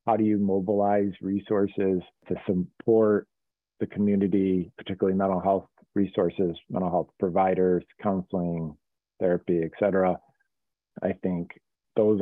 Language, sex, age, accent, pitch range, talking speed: English, male, 40-59, American, 90-105 Hz, 115 wpm